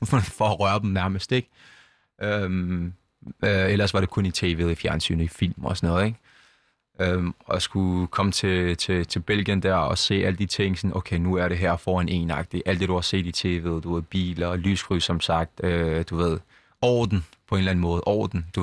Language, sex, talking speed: Danish, male, 220 wpm